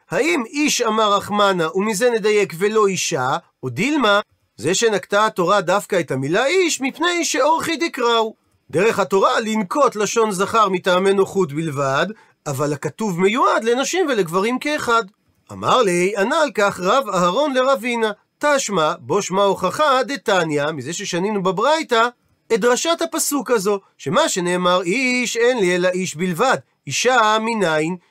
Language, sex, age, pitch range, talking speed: Hebrew, male, 40-59, 185-245 Hz, 135 wpm